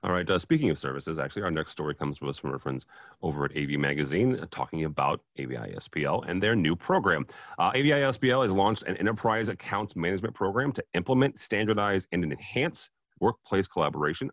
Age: 40-59